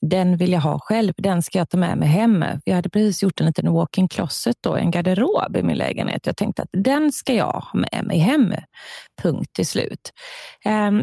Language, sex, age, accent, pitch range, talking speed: Swedish, female, 30-49, native, 180-235 Hz, 220 wpm